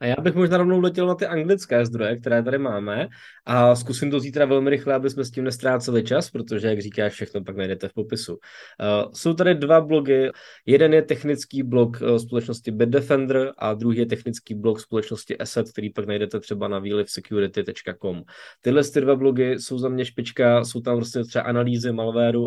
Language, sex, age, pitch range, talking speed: Czech, male, 20-39, 115-135 Hz, 190 wpm